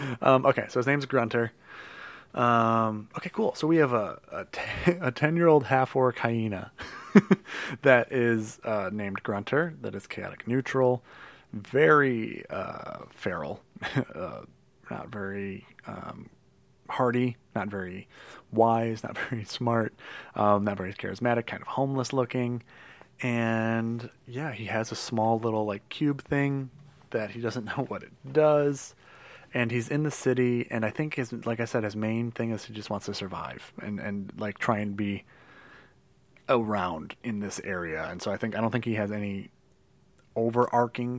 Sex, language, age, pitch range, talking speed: male, English, 30-49, 105-125 Hz, 160 wpm